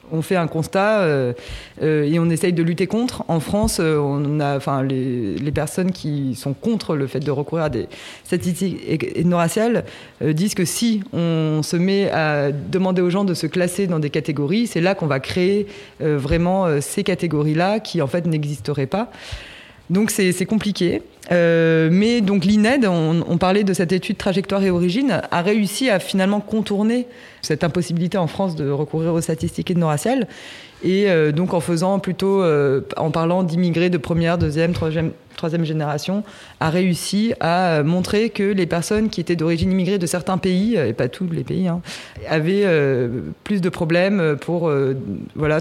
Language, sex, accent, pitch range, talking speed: French, female, French, 155-190 Hz, 190 wpm